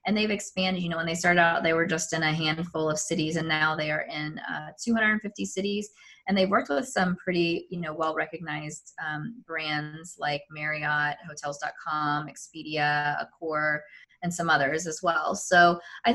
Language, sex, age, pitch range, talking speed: English, female, 20-39, 155-190 Hz, 175 wpm